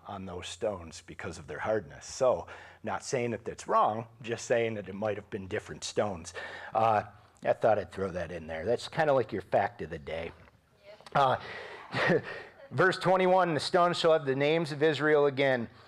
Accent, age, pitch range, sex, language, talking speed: American, 40-59, 115-145 Hz, male, English, 195 wpm